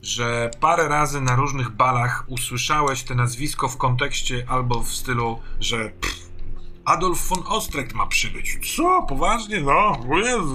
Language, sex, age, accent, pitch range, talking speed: Polish, male, 30-49, native, 115-135 Hz, 140 wpm